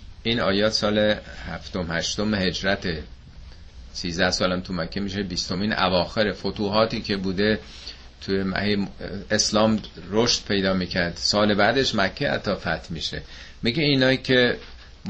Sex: male